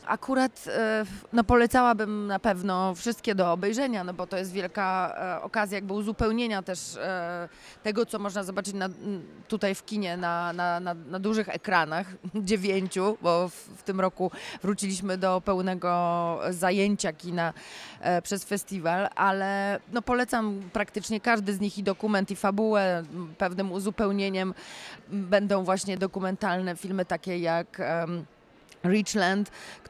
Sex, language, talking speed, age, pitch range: female, Polish, 130 wpm, 20-39, 175-205 Hz